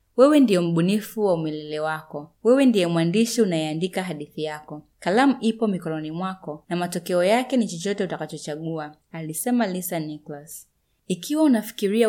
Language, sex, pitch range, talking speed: Swahili, female, 155-215 Hz, 135 wpm